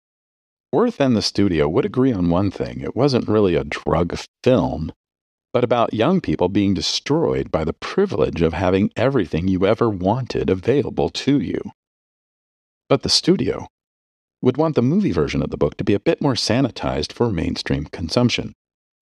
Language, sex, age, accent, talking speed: English, male, 40-59, American, 165 wpm